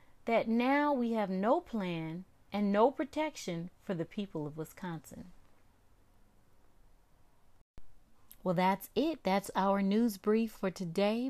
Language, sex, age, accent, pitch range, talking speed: English, female, 30-49, American, 185-225 Hz, 120 wpm